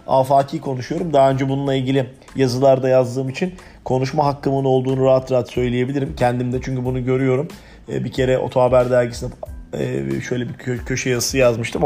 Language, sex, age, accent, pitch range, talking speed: Turkish, male, 40-59, native, 125-150 Hz, 140 wpm